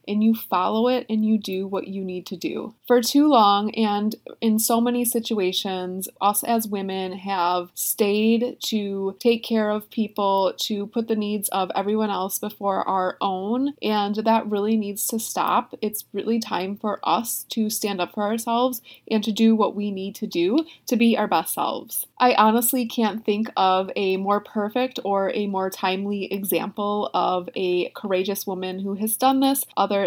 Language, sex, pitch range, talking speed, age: English, female, 195-240 Hz, 180 wpm, 20-39